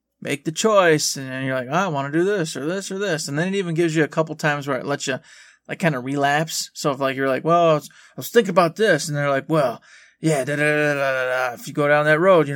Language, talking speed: English, 280 wpm